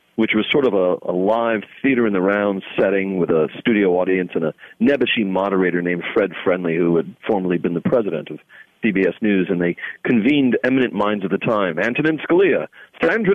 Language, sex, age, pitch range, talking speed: English, male, 40-59, 95-125 Hz, 180 wpm